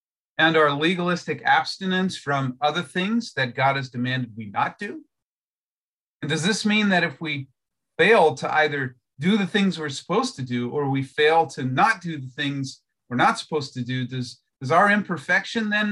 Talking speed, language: 185 wpm, English